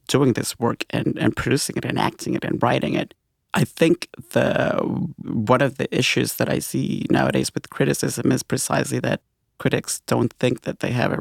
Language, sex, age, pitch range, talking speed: English, male, 30-49, 115-125 Hz, 195 wpm